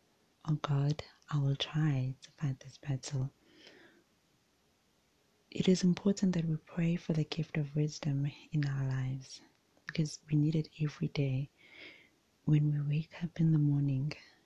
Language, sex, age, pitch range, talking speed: English, female, 30-49, 140-160 Hz, 150 wpm